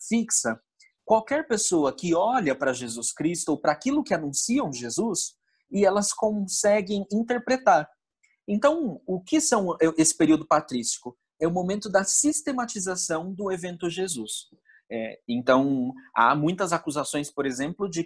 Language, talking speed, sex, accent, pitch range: Portuguese, 135 wpm, male, Brazilian, 155-215 Hz